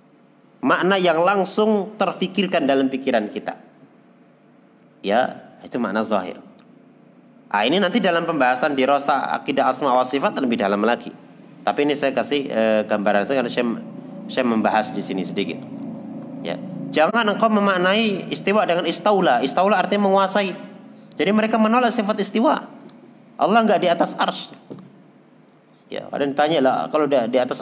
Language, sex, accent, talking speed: Indonesian, male, native, 145 wpm